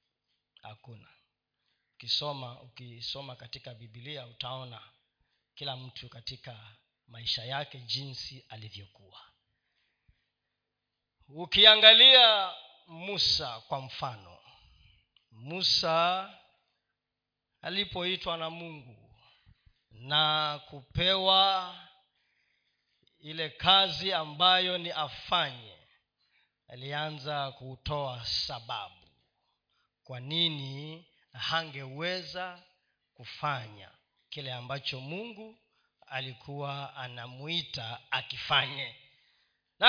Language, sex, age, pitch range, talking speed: Swahili, male, 40-59, 125-180 Hz, 65 wpm